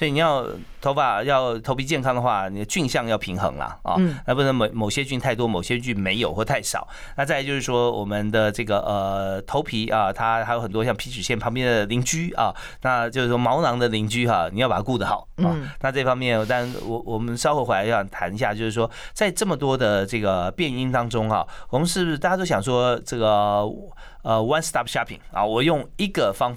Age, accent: 30-49, native